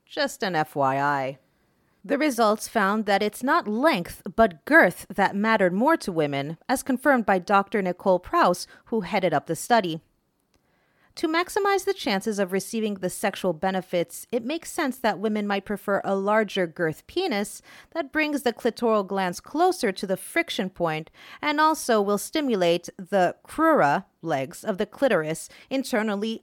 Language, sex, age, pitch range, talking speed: English, female, 40-59, 170-245 Hz, 155 wpm